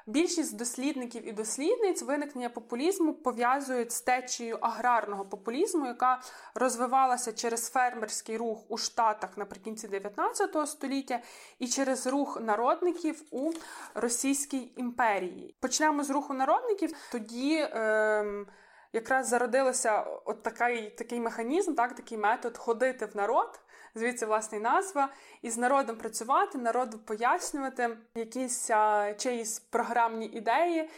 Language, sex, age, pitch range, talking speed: Ukrainian, female, 20-39, 220-260 Hz, 115 wpm